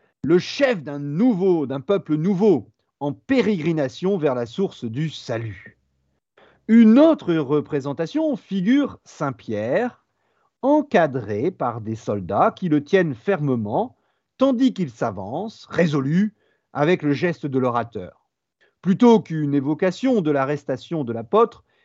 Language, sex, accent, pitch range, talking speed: French, male, French, 135-210 Hz, 120 wpm